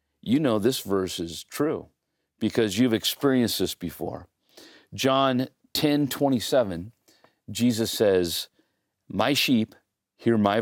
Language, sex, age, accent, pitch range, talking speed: English, male, 40-59, American, 100-130 Hz, 115 wpm